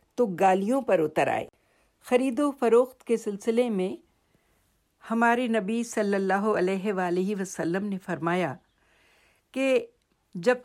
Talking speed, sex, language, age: 125 wpm, female, Urdu, 60-79